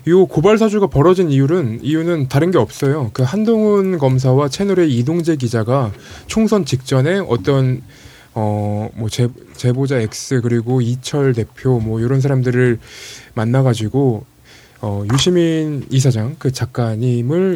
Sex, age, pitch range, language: male, 20-39, 125-155 Hz, Korean